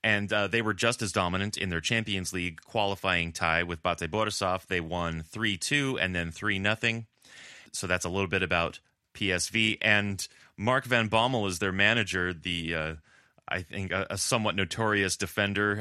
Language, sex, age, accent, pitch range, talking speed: English, male, 30-49, American, 90-105 Hz, 170 wpm